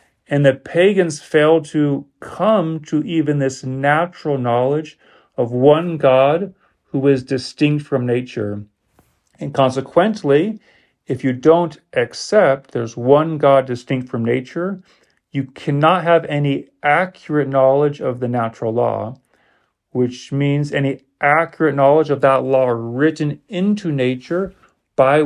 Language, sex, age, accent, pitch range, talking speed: English, male, 40-59, American, 125-155 Hz, 125 wpm